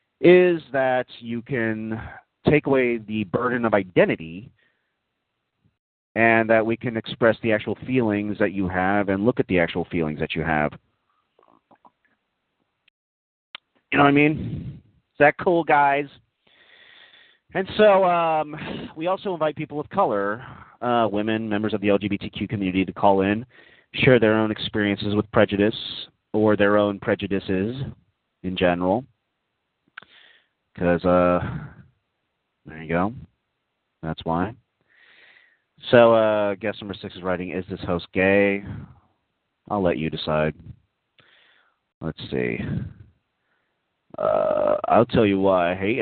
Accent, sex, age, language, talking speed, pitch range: American, male, 30-49, English, 130 wpm, 95-130 Hz